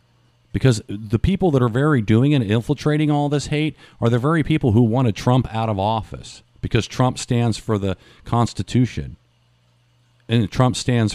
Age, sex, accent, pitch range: 50-69, male, American, 100-125 Hz